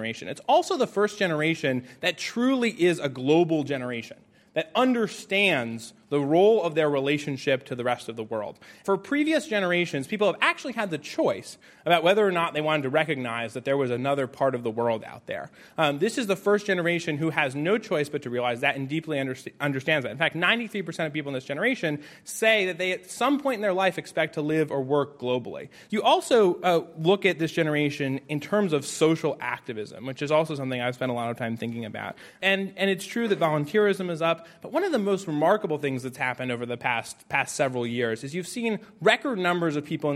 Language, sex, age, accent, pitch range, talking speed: English, male, 30-49, American, 135-195 Hz, 220 wpm